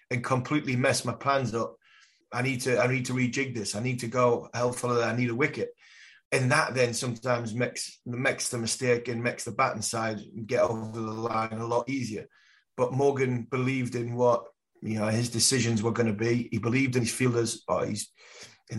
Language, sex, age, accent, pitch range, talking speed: English, male, 30-49, British, 115-130 Hz, 210 wpm